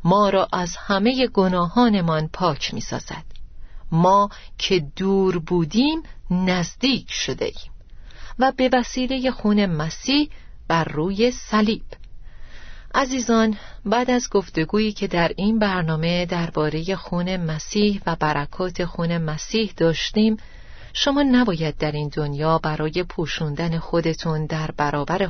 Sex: female